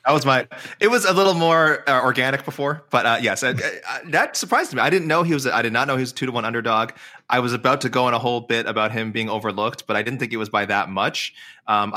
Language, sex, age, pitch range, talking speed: English, male, 20-39, 110-130 Hz, 295 wpm